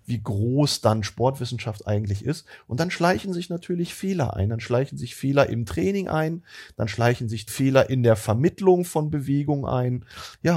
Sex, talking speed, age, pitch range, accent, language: male, 175 wpm, 30-49, 110-145 Hz, German, German